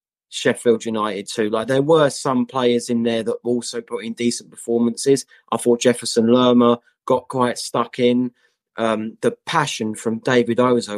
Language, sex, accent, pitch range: English, male, British, 110-125 Hz